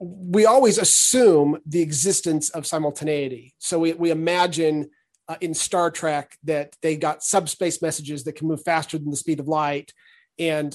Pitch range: 150-175 Hz